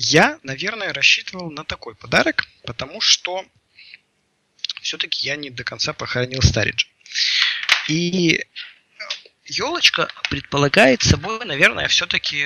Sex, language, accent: male, Russian, native